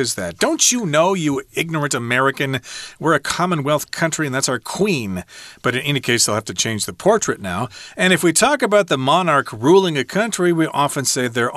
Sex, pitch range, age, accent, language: male, 110-140 Hz, 40-59, American, Chinese